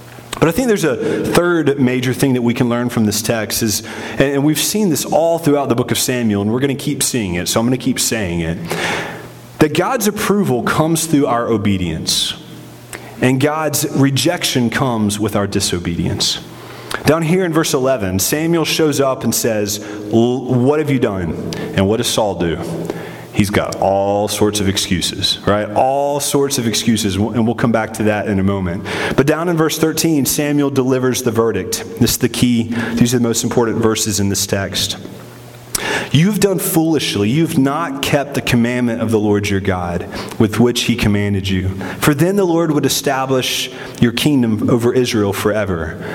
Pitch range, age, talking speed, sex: 105-140 Hz, 30-49, 185 wpm, male